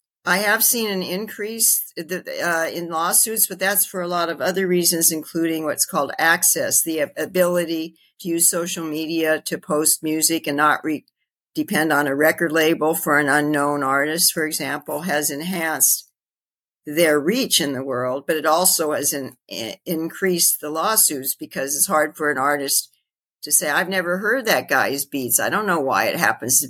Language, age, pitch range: English, 50-69, 140-180 Hz